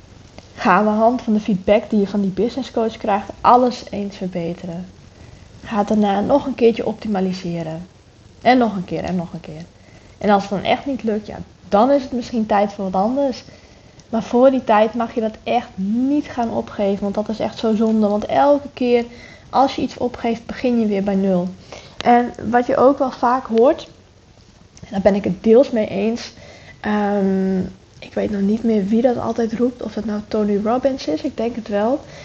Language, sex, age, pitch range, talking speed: English, female, 20-39, 195-235 Hz, 205 wpm